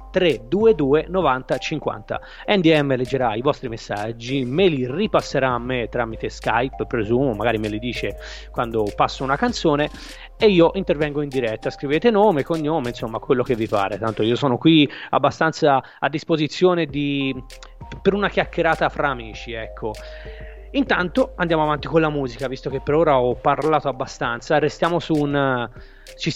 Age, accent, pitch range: 20-39, native, 125-170 Hz